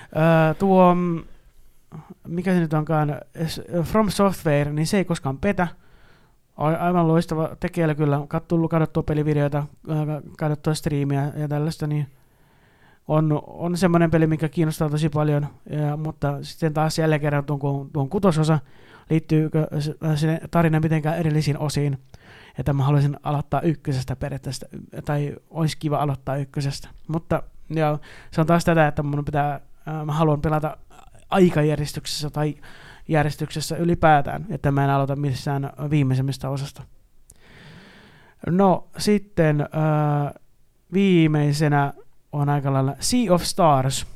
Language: Finnish